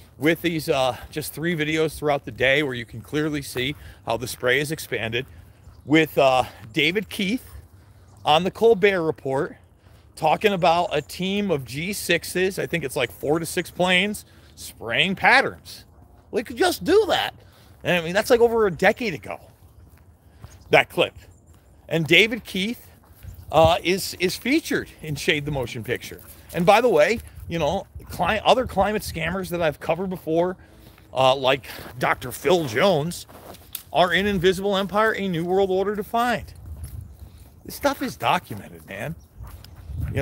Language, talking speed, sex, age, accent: English, 155 wpm, male, 40-59, American